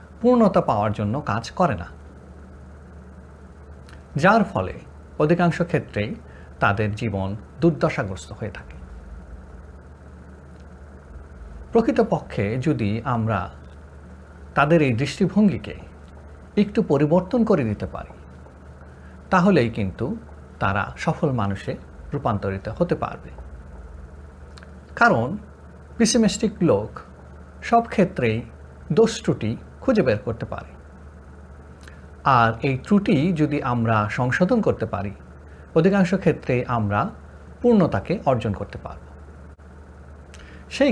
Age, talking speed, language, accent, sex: 50-69, 90 wpm, Bengali, native, male